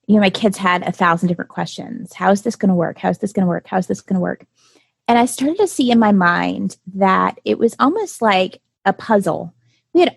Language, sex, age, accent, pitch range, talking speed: English, female, 20-39, American, 195-235 Hz, 260 wpm